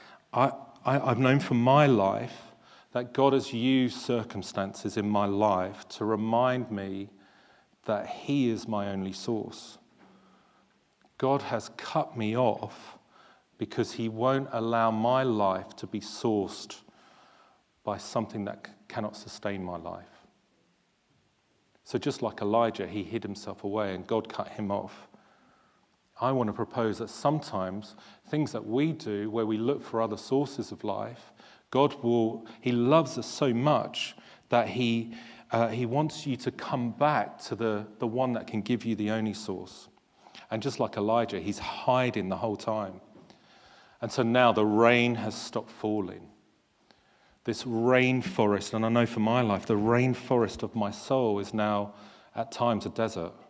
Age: 40-59